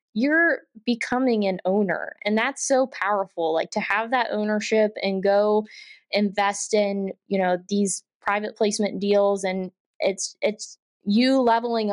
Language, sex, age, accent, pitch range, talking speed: English, female, 20-39, American, 195-220 Hz, 140 wpm